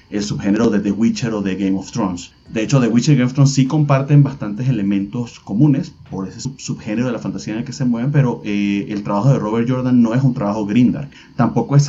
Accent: Venezuelan